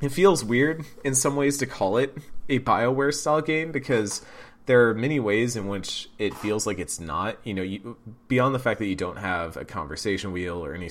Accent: American